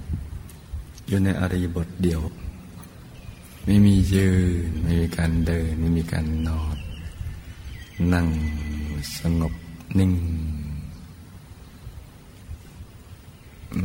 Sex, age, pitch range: male, 60-79, 80-90 Hz